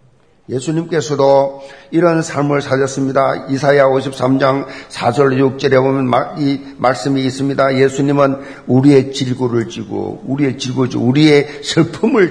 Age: 50-69